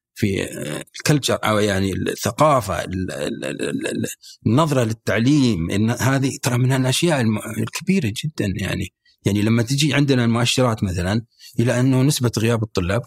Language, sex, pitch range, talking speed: Arabic, male, 100-140 Hz, 115 wpm